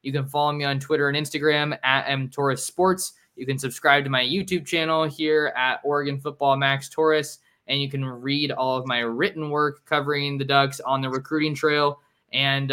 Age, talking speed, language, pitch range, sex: 20-39, 185 wpm, English, 130-150 Hz, male